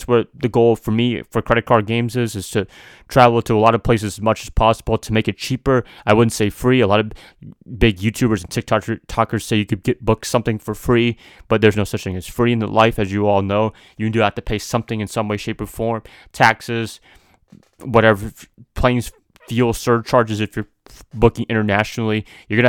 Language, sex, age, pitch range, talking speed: English, male, 20-39, 105-115 Hz, 215 wpm